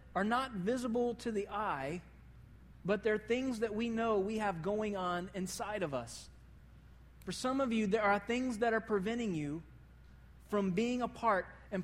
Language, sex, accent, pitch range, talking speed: English, male, American, 170-215 Hz, 175 wpm